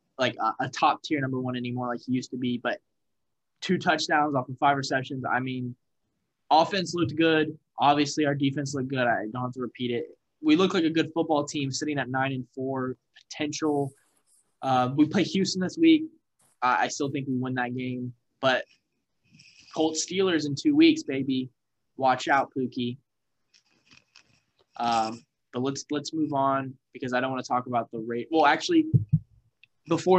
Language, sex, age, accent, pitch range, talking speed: English, male, 10-29, American, 125-150 Hz, 180 wpm